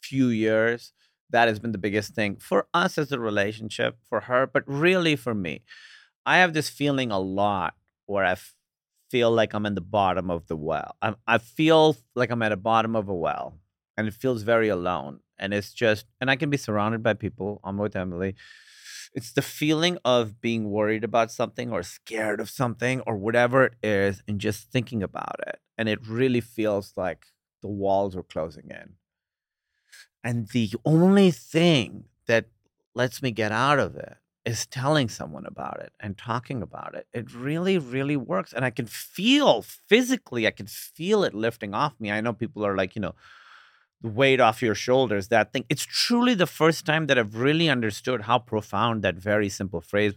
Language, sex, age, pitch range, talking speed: English, male, 30-49, 105-135 Hz, 195 wpm